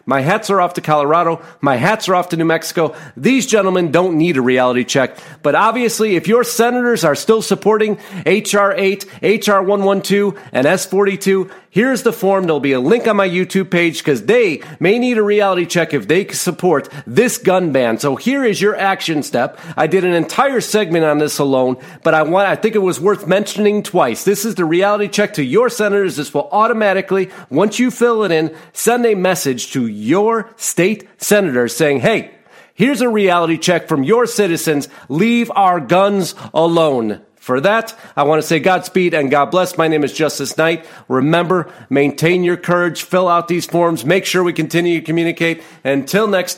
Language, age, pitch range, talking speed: English, 40-59, 155-205 Hz, 195 wpm